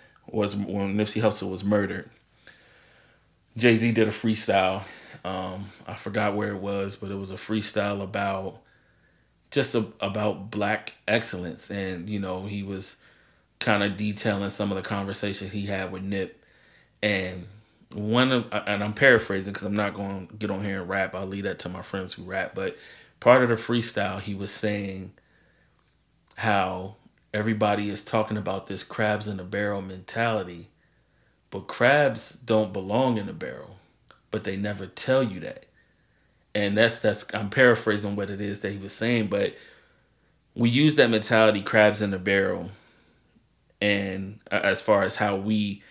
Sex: male